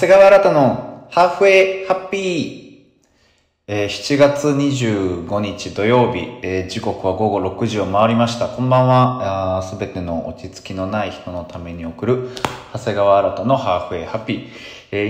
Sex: male